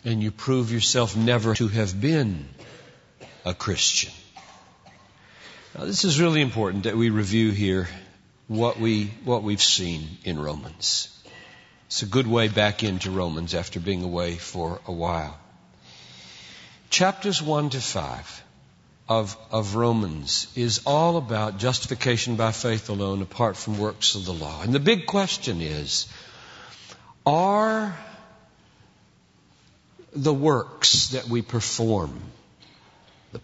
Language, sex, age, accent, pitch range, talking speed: English, male, 50-69, American, 105-165 Hz, 125 wpm